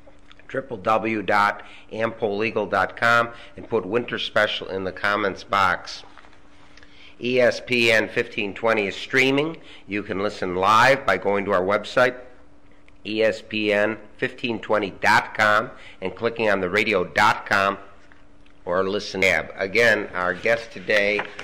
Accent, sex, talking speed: American, male, 95 wpm